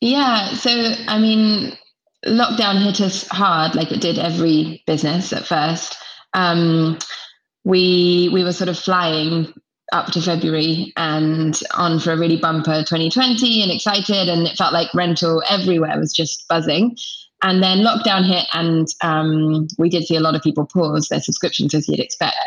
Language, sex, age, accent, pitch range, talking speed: English, female, 20-39, British, 165-220 Hz, 165 wpm